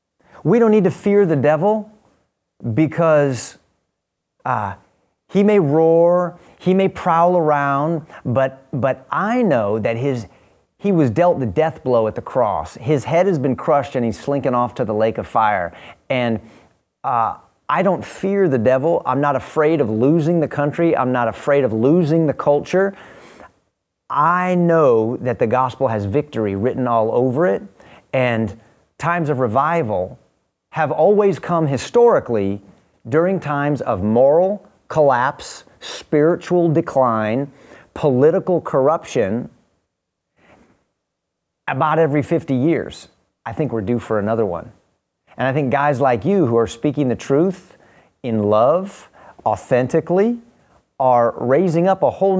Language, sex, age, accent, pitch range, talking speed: English, male, 30-49, American, 125-175 Hz, 140 wpm